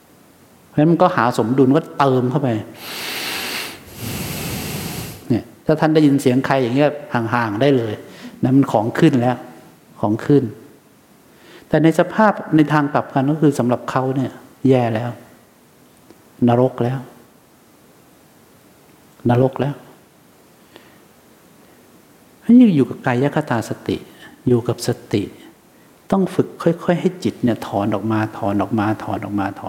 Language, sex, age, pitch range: English, male, 60-79, 120-155 Hz